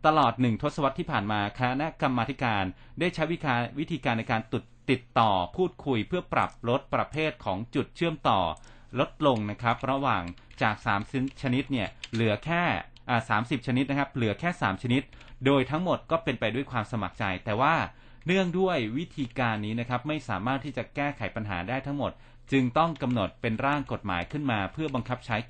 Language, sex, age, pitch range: Thai, male, 30-49, 110-135 Hz